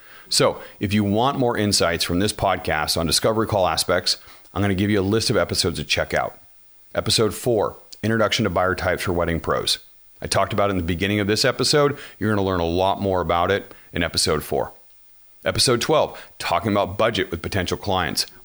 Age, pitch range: 40-59, 90-115 Hz